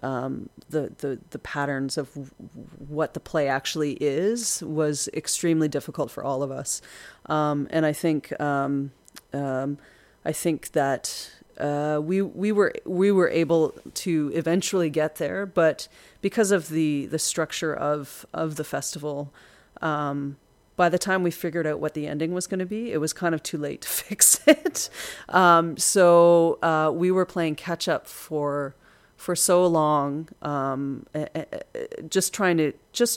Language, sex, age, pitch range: English, female, 30-49, 145-170 Hz